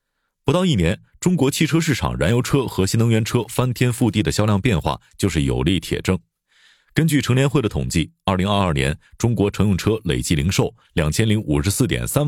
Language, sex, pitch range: Chinese, male, 95-125 Hz